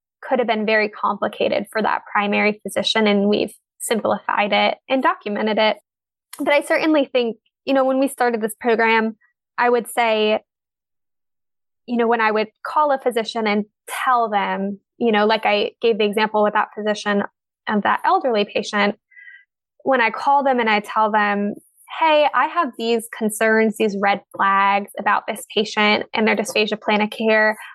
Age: 10-29